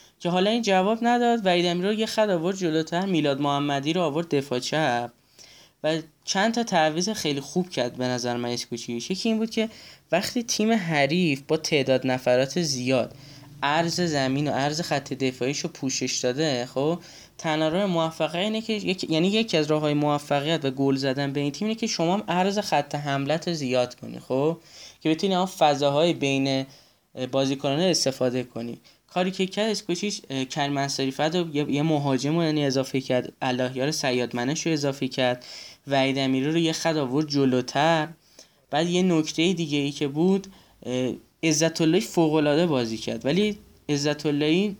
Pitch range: 135-175 Hz